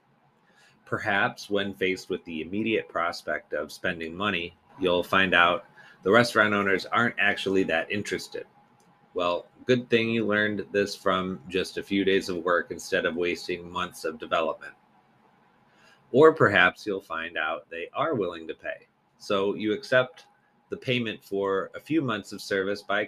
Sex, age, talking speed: male, 30-49, 160 wpm